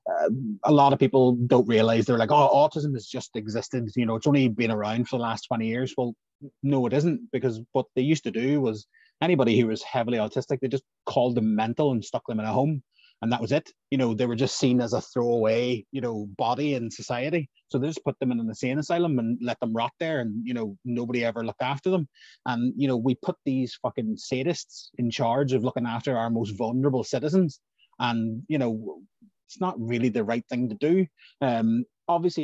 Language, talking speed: English, 225 wpm